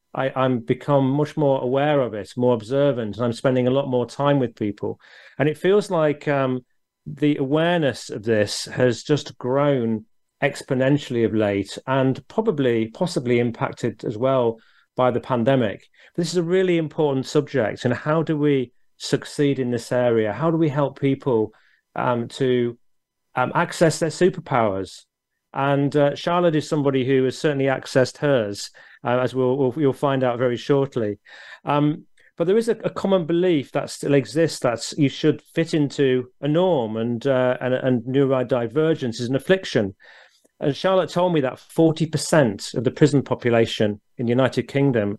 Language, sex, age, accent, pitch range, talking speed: English, male, 40-59, British, 125-150 Hz, 170 wpm